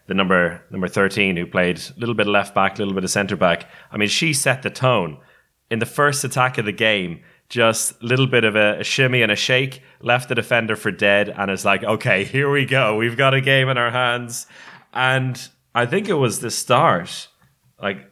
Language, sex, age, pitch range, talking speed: English, male, 20-39, 100-125 Hz, 220 wpm